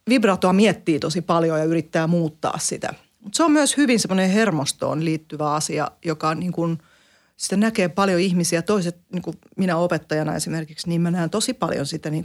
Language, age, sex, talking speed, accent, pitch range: Finnish, 30-49, female, 180 wpm, native, 155-185 Hz